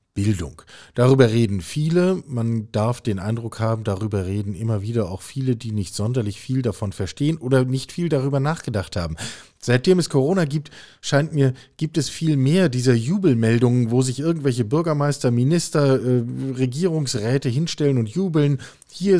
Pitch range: 100-135 Hz